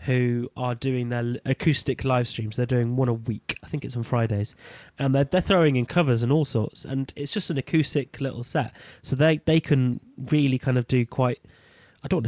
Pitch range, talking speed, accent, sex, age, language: 115-135 Hz, 220 wpm, British, male, 30-49, English